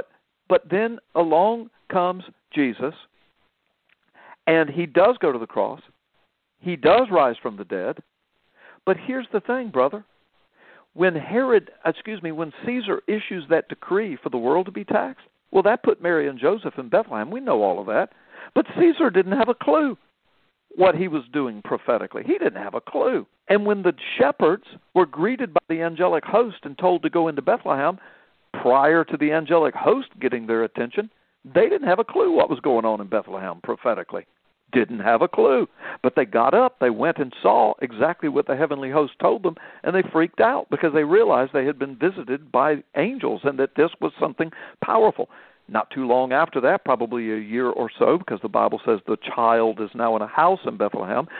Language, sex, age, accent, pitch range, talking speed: English, male, 60-79, American, 140-220 Hz, 190 wpm